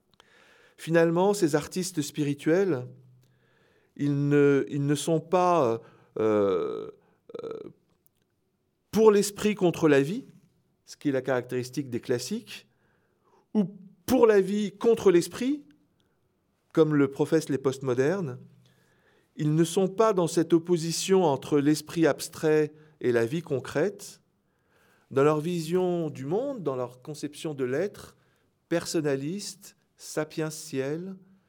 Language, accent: French, French